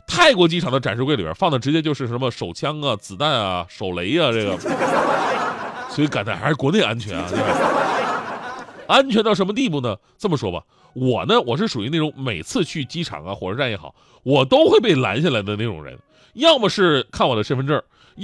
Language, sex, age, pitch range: Chinese, male, 30-49, 125-195 Hz